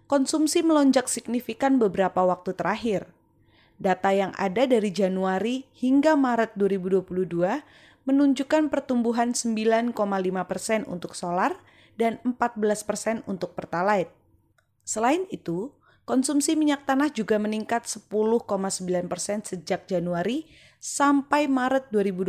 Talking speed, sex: 95 wpm, female